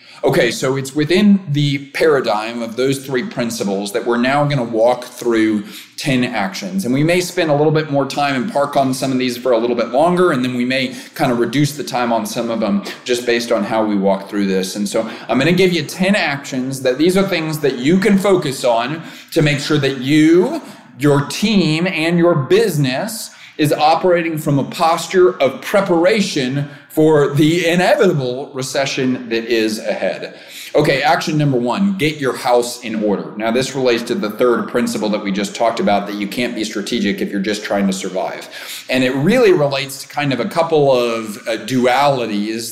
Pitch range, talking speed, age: 120-160 Hz, 205 wpm, 30-49